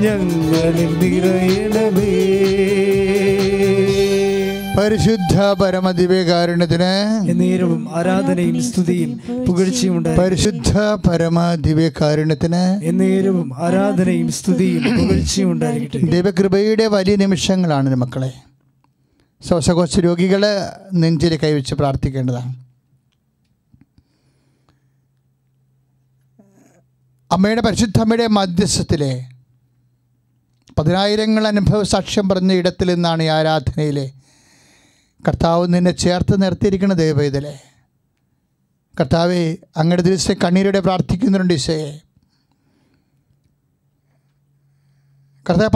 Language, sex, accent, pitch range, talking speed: English, male, Indian, 140-195 Hz, 50 wpm